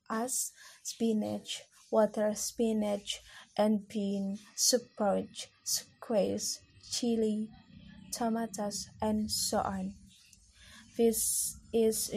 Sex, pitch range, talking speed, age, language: female, 200-225 Hz, 80 wpm, 20-39, Indonesian